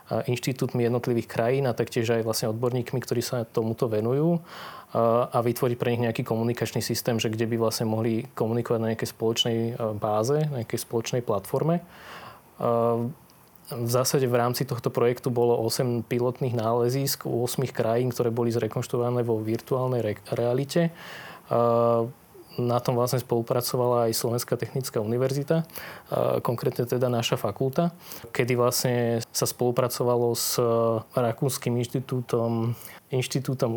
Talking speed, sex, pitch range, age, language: 130 wpm, male, 115-125 Hz, 20-39, Slovak